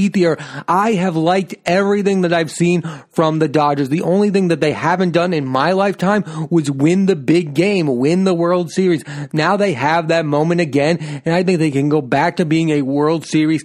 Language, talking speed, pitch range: English, 205 wpm, 150-185 Hz